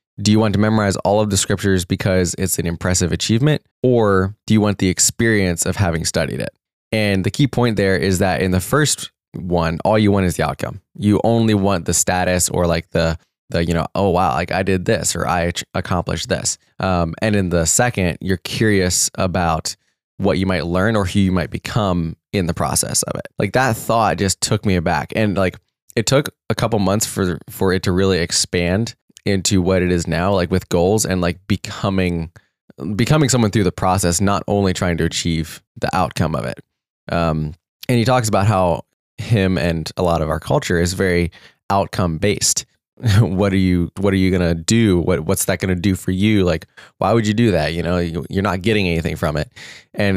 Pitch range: 85-105 Hz